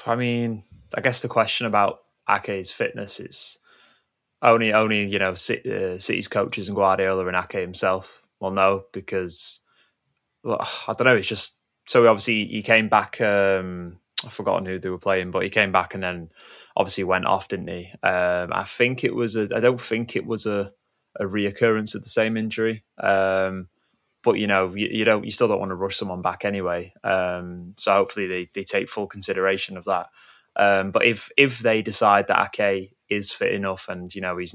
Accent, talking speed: British, 195 wpm